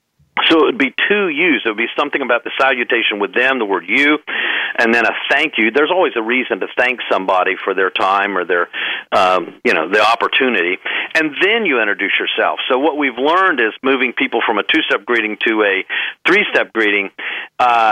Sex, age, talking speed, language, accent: male, 50-69, 205 wpm, English, American